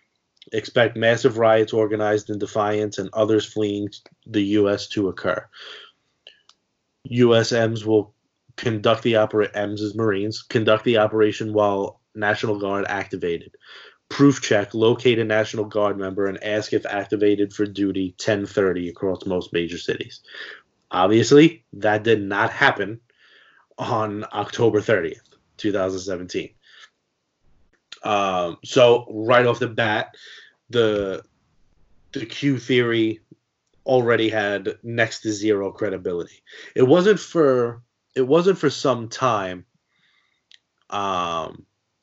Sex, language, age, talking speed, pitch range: male, English, 30-49, 110 wpm, 100-115 Hz